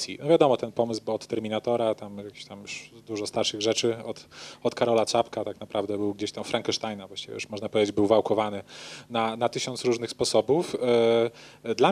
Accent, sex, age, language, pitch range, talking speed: native, male, 30-49, Polish, 115-135 Hz, 170 wpm